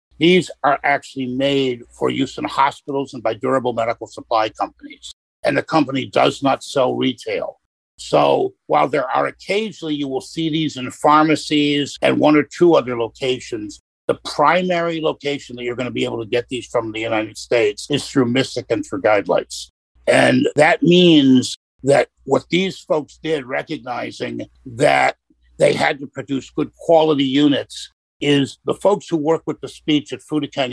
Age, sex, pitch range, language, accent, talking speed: 50-69, male, 125-160 Hz, English, American, 170 wpm